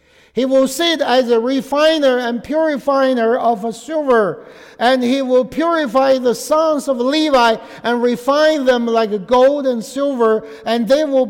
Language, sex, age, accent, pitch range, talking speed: English, male, 60-79, American, 215-270 Hz, 155 wpm